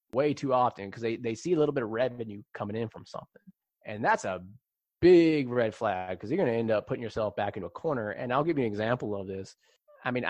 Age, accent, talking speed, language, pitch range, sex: 20-39, American, 255 wpm, English, 115-180 Hz, male